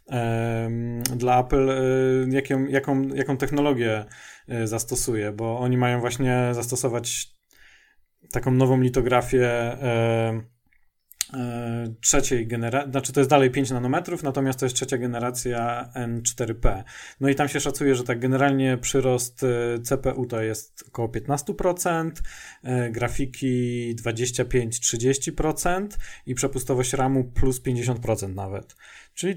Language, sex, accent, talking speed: Polish, male, native, 110 wpm